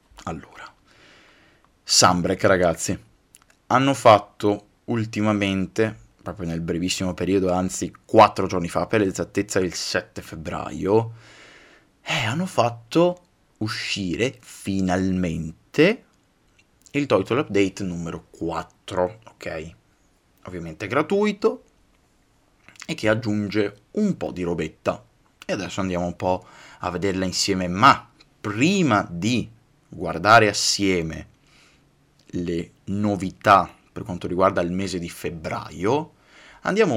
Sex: male